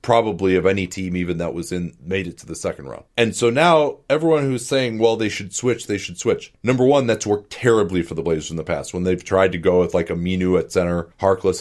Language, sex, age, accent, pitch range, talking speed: English, male, 30-49, American, 95-115 Hz, 260 wpm